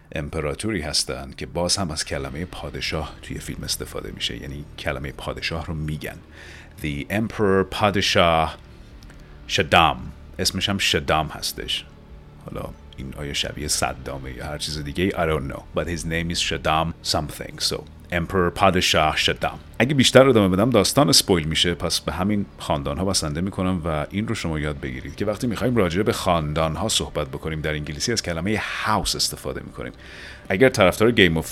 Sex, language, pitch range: male, Persian, 75-95 Hz